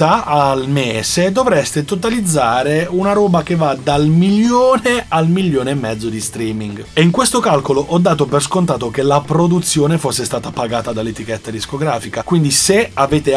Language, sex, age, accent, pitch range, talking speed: Italian, male, 30-49, native, 125-160 Hz, 155 wpm